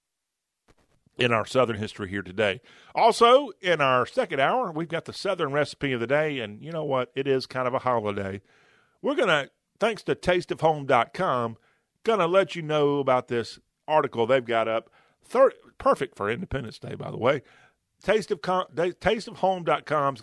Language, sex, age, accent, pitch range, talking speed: English, male, 50-69, American, 115-155 Hz, 170 wpm